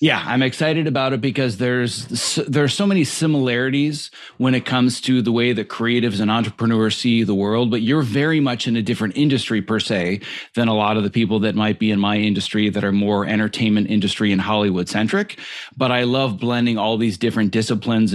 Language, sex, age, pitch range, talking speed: English, male, 40-59, 110-140 Hz, 210 wpm